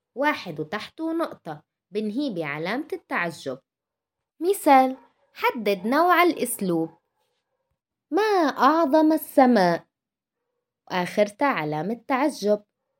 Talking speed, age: 75 wpm, 20-39